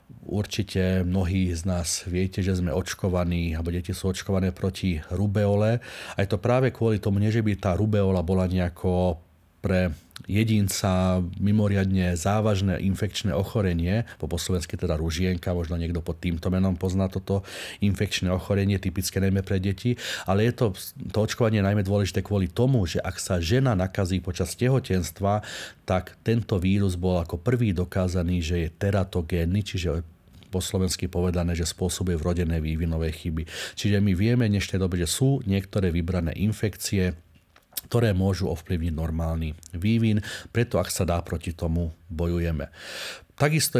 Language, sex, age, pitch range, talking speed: Slovak, male, 30-49, 90-100 Hz, 145 wpm